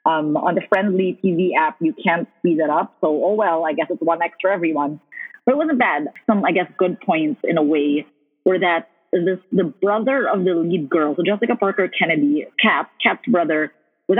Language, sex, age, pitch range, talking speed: English, female, 30-49, 170-220 Hz, 205 wpm